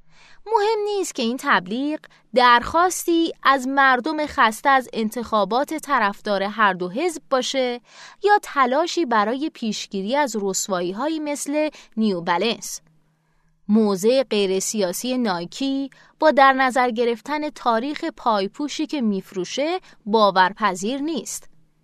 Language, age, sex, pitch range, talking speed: Persian, 20-39, female, 200-310 Hz, 105 wpm